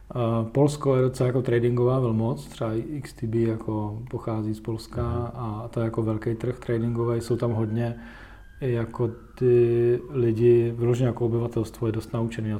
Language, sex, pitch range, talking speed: Czech, male, 110-125 Hz, 150 wpm